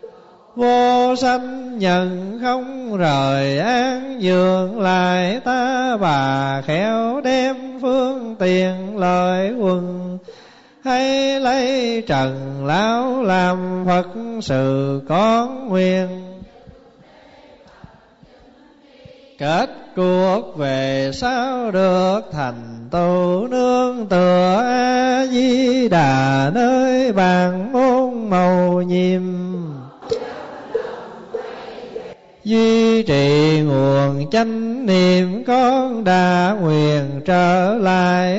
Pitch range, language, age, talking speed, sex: 180-255 Hz, Vietnamese, 20-39, 80 wpm, male